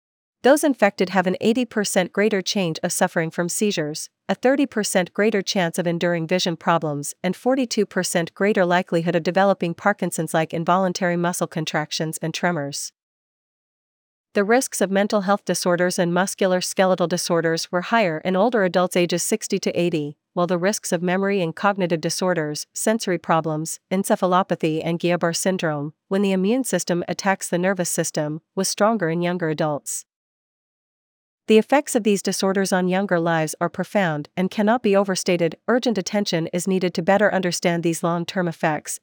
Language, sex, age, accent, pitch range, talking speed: English, female, 40-59, American, 170-200 Hz, 155 wpm